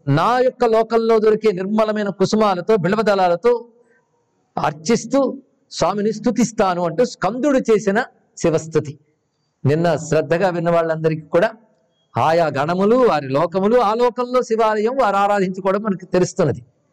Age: 50-69